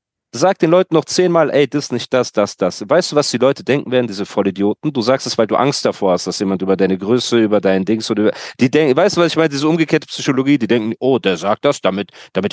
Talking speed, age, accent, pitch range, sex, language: 275 wpm, 40-59, German, 110-145 Hz, male, German